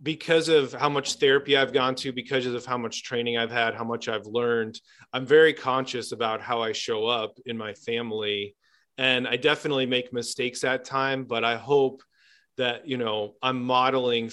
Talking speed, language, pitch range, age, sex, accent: 190 wpm, English, 115-135 Hz, 30-49, male, American